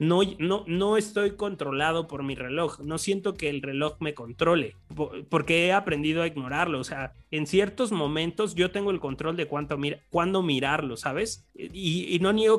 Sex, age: male, 30-49